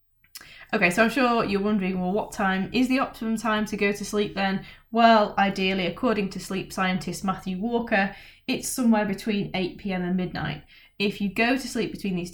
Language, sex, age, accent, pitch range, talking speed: English, female, 10-29, British, 175-215 Hz, 190 wpm